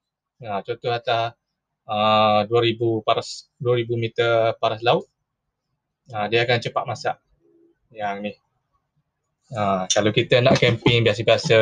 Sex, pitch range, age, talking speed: male, 105-150 Hz, 20-39, 125 wpm